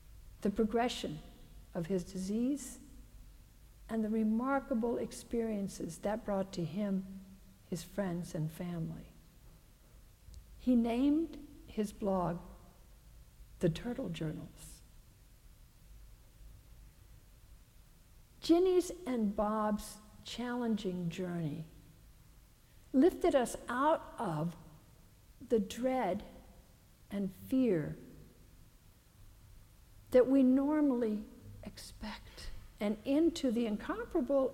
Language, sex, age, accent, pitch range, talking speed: English, female, 60-79, American, 165-255 Hz, 80 wpm